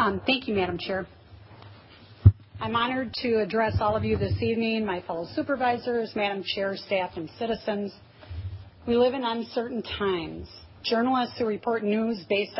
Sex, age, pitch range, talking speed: female, 40-59, 150-210 Hz, 155 wpm